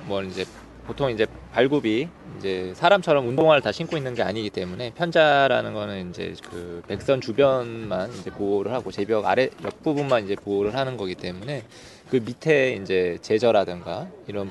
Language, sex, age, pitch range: Korean, male, 20-39, 100-135 Hz